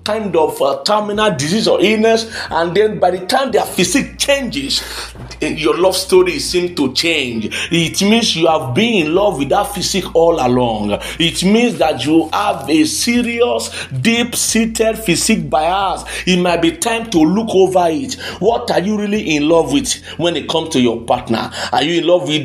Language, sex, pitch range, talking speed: English, male, 150-205 Hz, 185 wpm